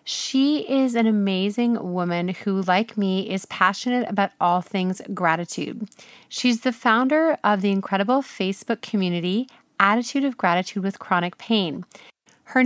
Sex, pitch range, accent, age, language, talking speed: female, 190-245 Hz, American, 30-49, English, 140 wpm